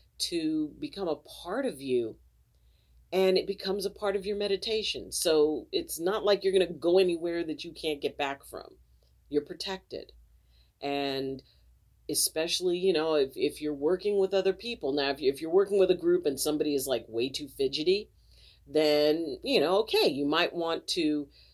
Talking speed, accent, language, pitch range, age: 180 wpm, American, English, 145-200 Hz, 40-59